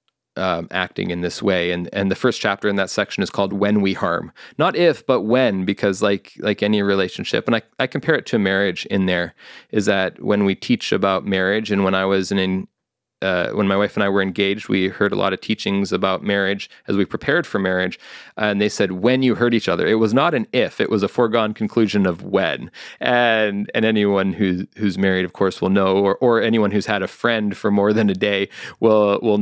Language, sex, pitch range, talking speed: English, male, 95-110 Hz, 235 wpm